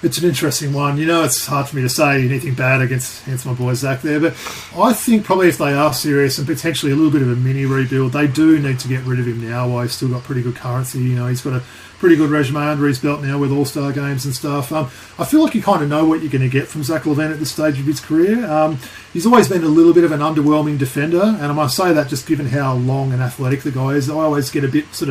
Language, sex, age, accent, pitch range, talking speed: English, male, 40-59, Australian, 135-160 Hz, 290 wpm